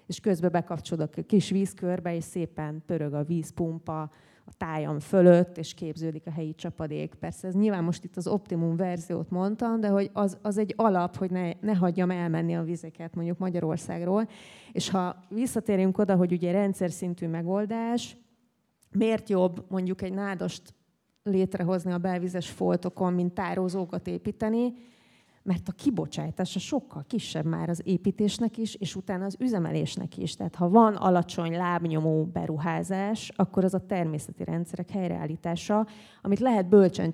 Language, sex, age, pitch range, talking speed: Hungarian, female, 30-49, 170-205 Hz, 150 wpm